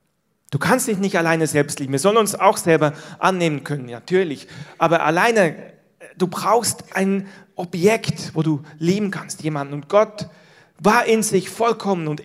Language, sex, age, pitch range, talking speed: German, male, 40-59, 155-200 Hz, 160 wpm